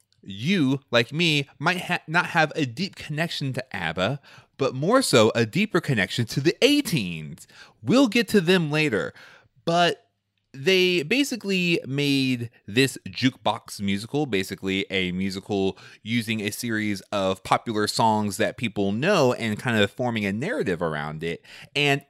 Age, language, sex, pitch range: 30-49, English, male, 110-170 Hz